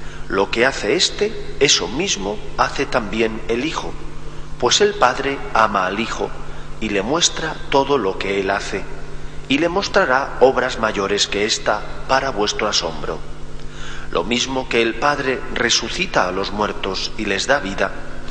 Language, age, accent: Spanish, 40-59, Spanish